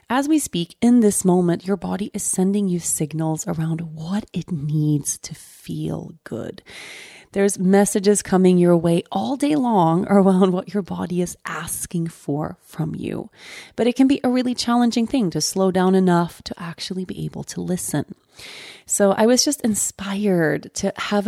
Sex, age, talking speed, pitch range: female, 30-49, 170 wpm, 170-225 Hz